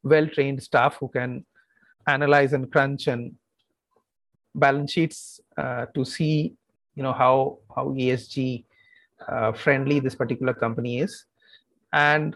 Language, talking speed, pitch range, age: English, 120 wpm, 125-165 Hz, 30-49